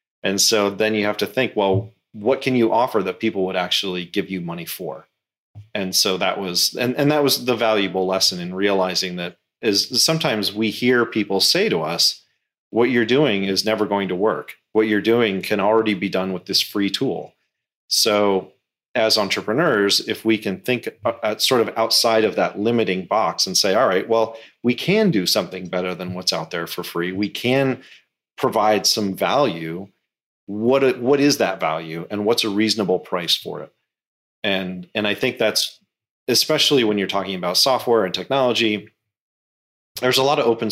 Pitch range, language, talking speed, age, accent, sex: 95-115 Hz, English, 185 wpm, 30-49, American, male